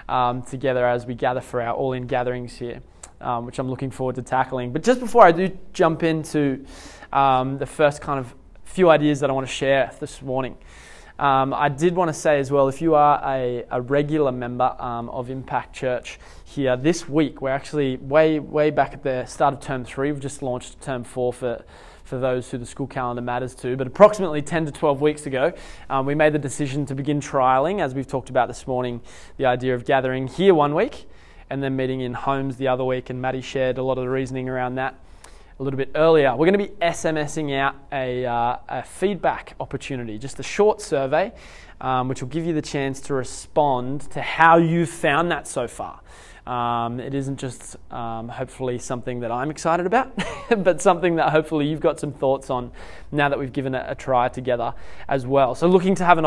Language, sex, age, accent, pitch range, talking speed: English, male, 20-39, Australian, 125-150 Hz, 215 wpm